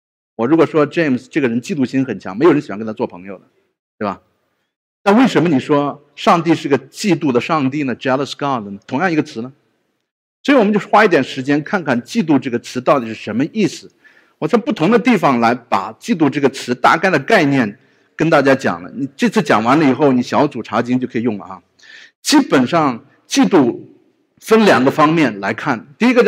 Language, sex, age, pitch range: English, male, 50-69, 120-185 Hz